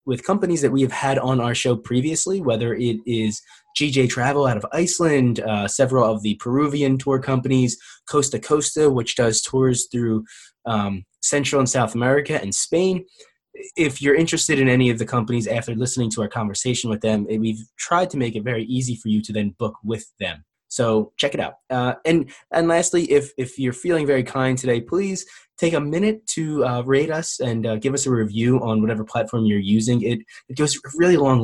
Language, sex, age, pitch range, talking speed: English, male, 20-39, 110-140 Hz, 205 wpm